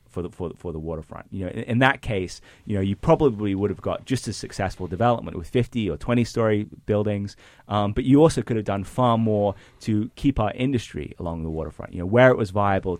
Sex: male